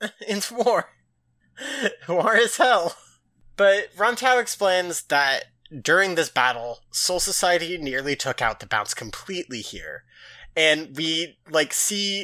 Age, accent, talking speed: 30-49, American, 125 wpm